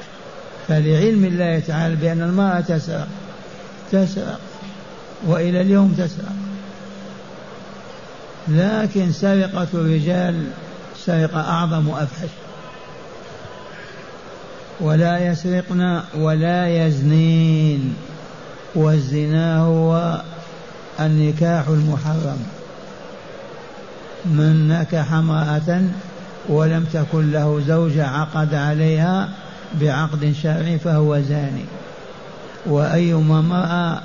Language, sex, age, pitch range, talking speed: Arabic, male, 60-79, 155-175 Hz, 70 wpm